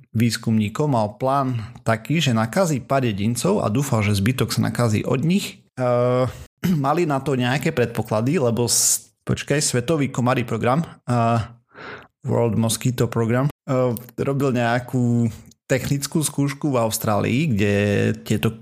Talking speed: 125 wpm